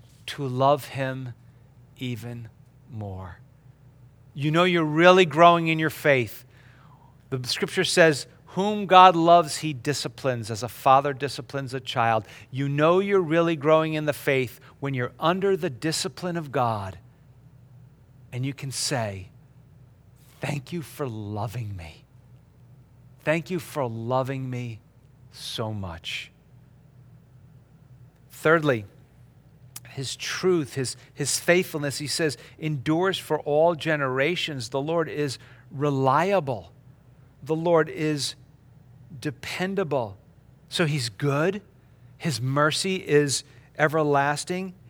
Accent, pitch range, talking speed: American, 125-155 Hz, 115 wpm